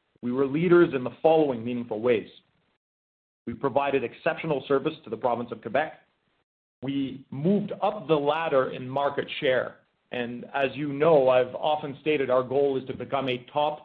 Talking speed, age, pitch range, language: 170 wpm, 40-59, 125-155 Hz, English